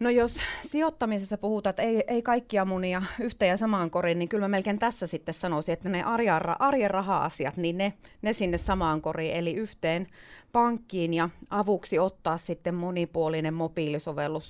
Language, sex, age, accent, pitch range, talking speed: Finnish, female, 30-49, native, 165-220 Hz, 165 wpm